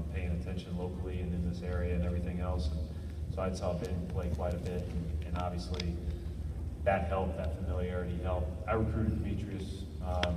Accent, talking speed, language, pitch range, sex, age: American, 180 wpm, English, 85-90 Hz, male, 30-49